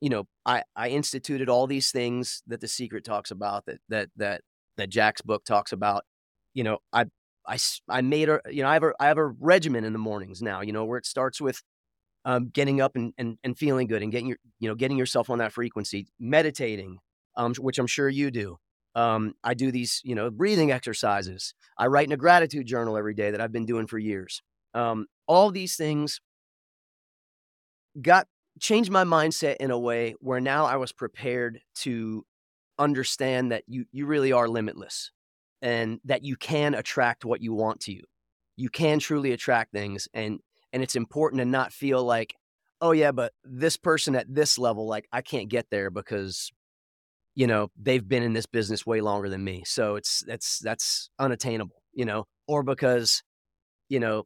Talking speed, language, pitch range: 195 wpm, English, 105-135 Hz